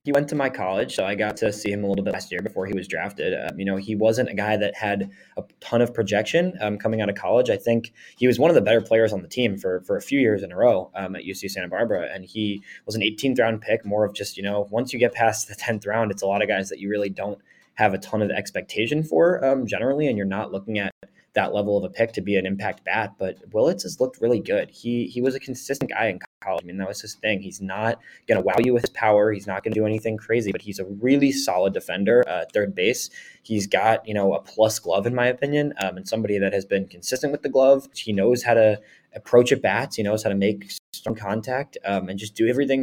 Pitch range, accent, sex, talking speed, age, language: 100-120 Hz, American, male, 280 wpm, 20-39, English